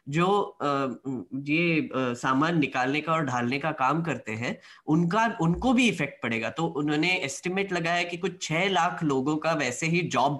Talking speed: 180 wpm